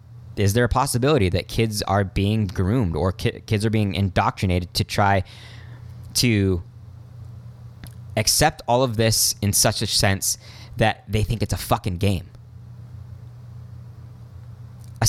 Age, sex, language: 20-39, male, English